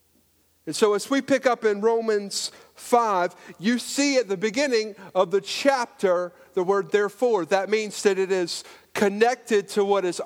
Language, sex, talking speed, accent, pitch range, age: English, male, 170 wpm, American, 175-230 Hz, 50-69